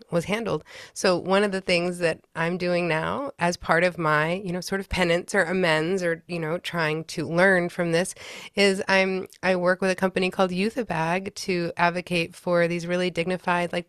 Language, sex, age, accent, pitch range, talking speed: English, female, 20-39, American, 165-190 Hz, 205 wpm